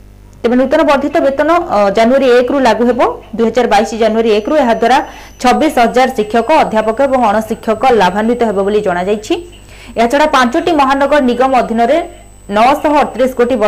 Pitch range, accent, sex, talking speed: 210-260 Hz, native, female, 75 wpm